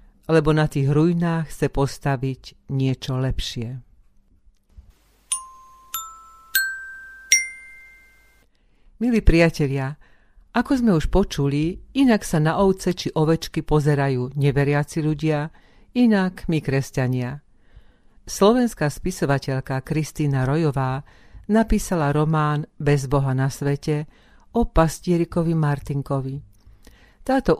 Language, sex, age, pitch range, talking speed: Slovak, female, 50-69, 140-170 Hz, 85 wpm